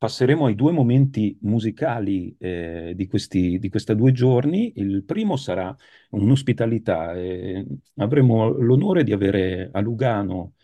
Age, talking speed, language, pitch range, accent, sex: 40-59, 120 wpm, Italian, 100-120 Hz, native, male